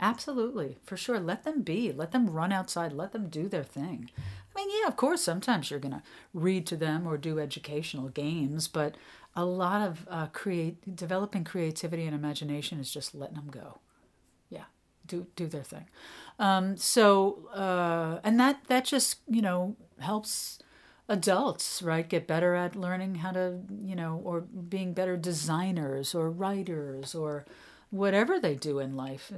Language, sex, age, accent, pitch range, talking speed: English, female, 50-69, American, 155-195 Hz, 170 wpm